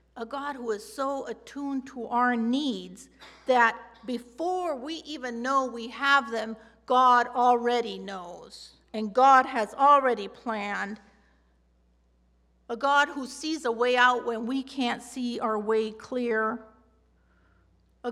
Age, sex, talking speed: 50-69, female, 135 wpm